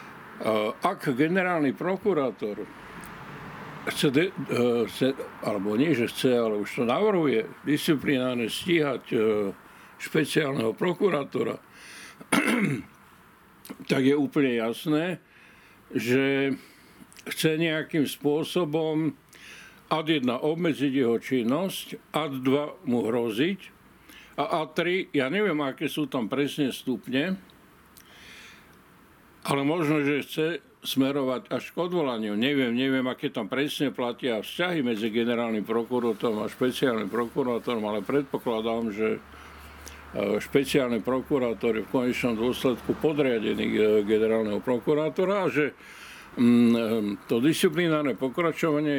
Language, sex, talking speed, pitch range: Slovak, male, 100 wpm, 115-155 Hz